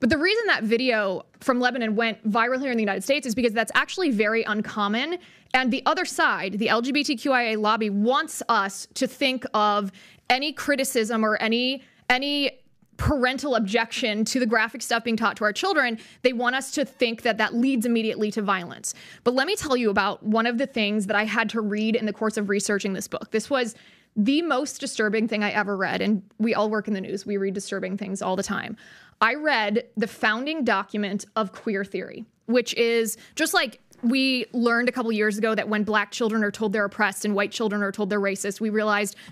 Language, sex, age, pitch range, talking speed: English, female, 20-39, 210-255 Hz, 210 wpm